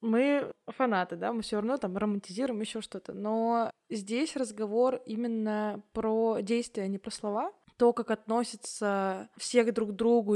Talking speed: 155 wpm